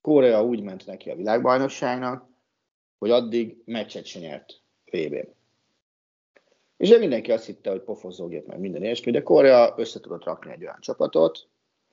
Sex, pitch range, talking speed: male, 95-125 Hz, 140 wpm